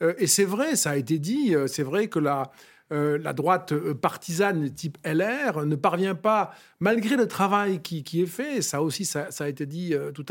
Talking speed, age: 200 wpm, 50-69